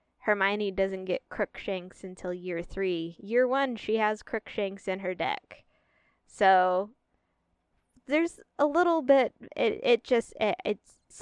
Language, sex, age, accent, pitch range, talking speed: English, female, 20-39, American, 185-255 Hz, 135 wpm